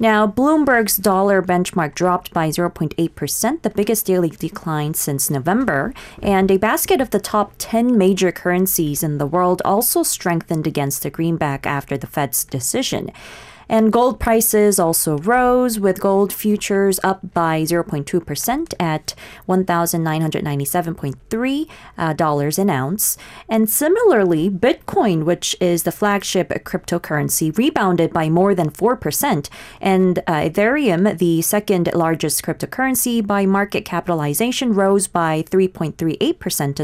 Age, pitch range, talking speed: 30-49, 165-220 Hz, 125 wpm